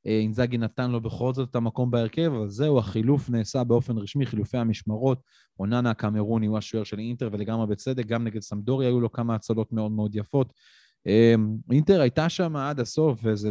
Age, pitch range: 30-49, 110-135 Hz